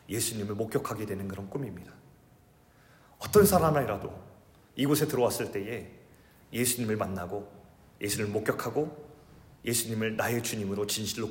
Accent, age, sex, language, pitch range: native, 30-49, male, Korean, 105-155 Hz